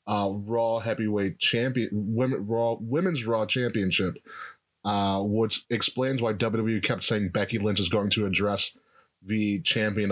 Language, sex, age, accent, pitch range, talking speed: English, male, 30-49, American, 100-125 Hz, 140 wpm